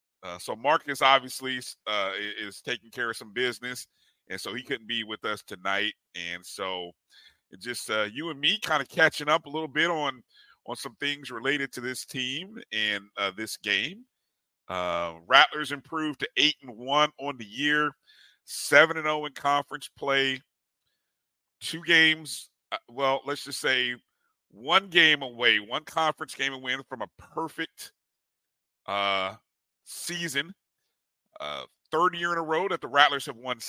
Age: 50-69